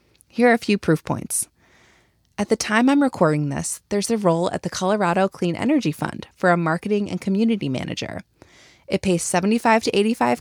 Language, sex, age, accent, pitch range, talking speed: English, female, 30-49, American, 165-230 Hz, 175 wpm